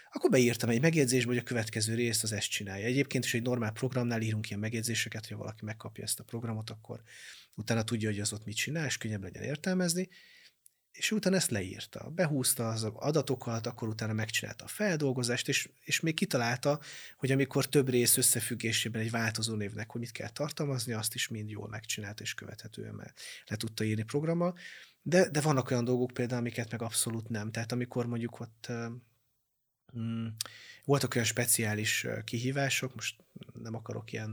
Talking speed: 170 wpm